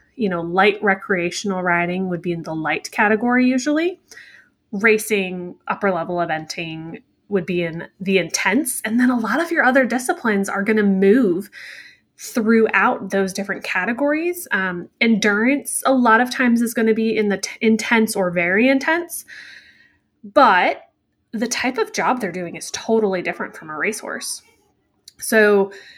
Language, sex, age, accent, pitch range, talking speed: English, female, 20-39, American, 180-230 Hz, 155 wpm